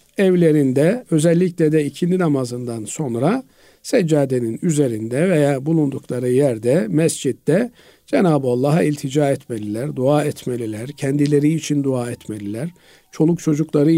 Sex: male